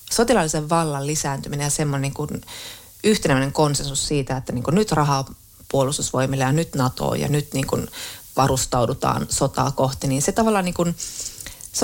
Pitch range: 135-165 Hz